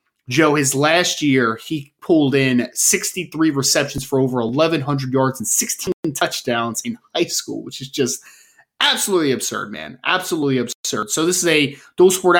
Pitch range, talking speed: 140-180 Hz, 155 wpm